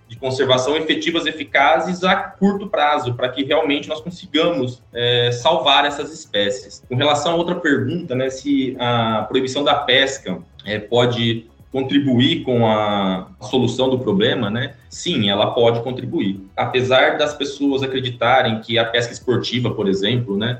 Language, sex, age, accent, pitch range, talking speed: Portuguese, male, 20-39, Brazilian, 110-135 Hz, 150 wpm